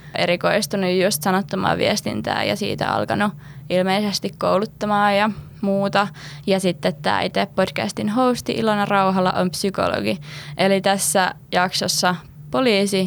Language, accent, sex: Finnish, native, female